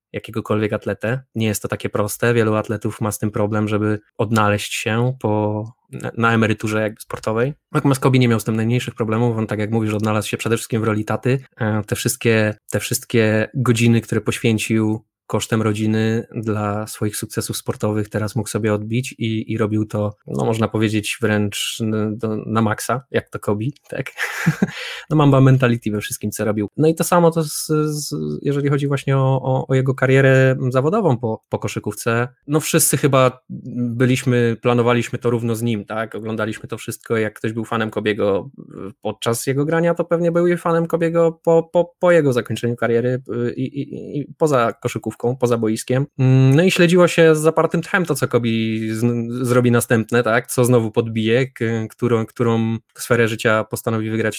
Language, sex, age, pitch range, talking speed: Polish, male, 20-39, 110-130 Hz, 180 wpm